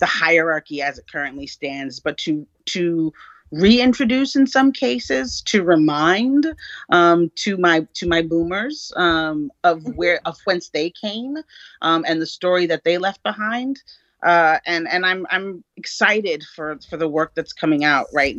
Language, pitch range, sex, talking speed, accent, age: English, 150-215 Hz, female, 165 wpm, American, 30-49